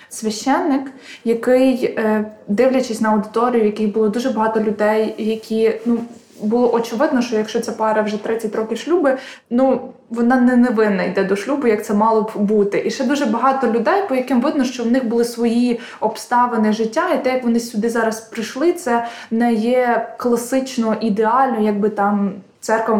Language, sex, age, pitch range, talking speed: Ukrainian, female, 20-39, 220-255 Hz, 170 wpm